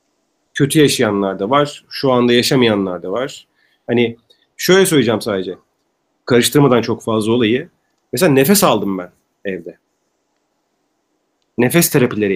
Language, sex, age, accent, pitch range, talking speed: Turkish, male, 40-59, native, 125-170 Hz, 110 wpm